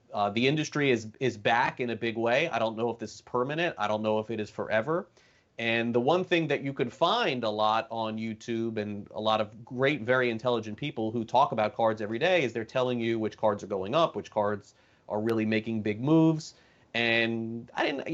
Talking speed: 230 wpm